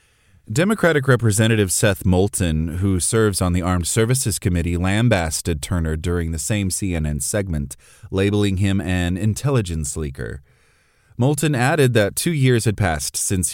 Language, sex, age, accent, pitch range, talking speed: English, male, 30-49, American, 90-120 Hz, 135 wpm